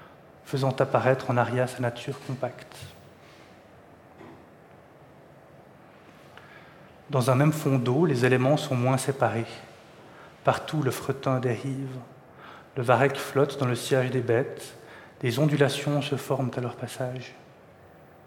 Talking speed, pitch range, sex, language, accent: 120 wpm, 125-140 Hz, male, French, French